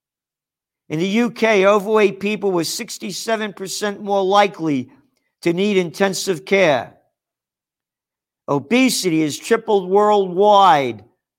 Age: 50-69